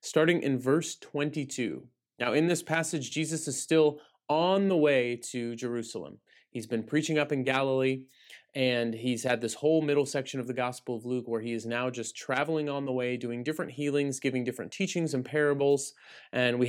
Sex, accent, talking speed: male, American, 190 wpm